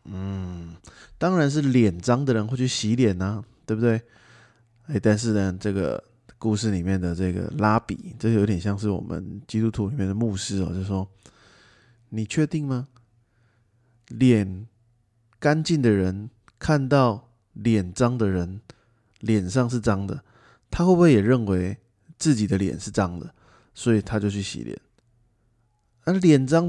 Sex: male